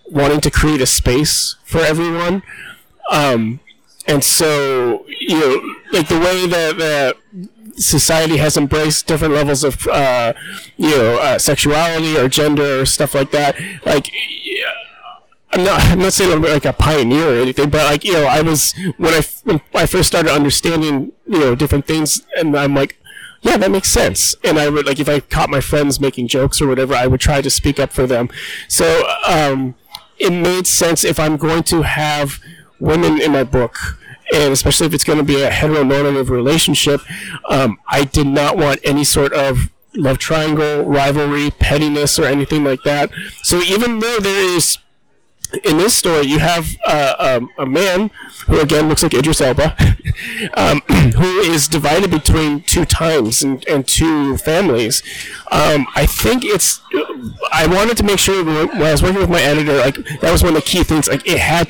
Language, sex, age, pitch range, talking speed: English, male, 30-49, 140-165 Hz, 185 wpm